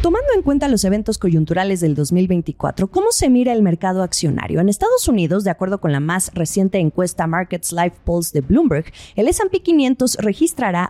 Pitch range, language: 170-245 Hz, Spanish